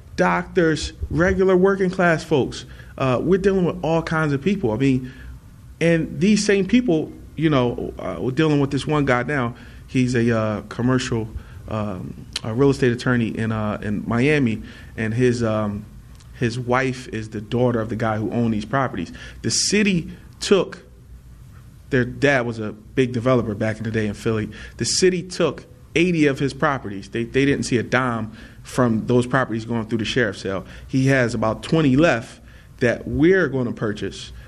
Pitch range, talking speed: 115-155 Hz, 180 wpm